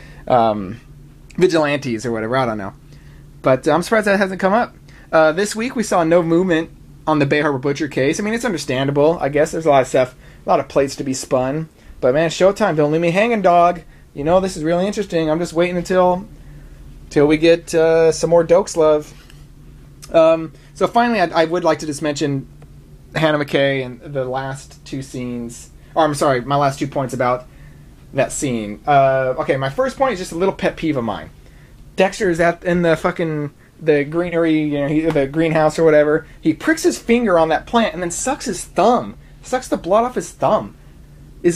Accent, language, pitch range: American, English, 145-185 Hz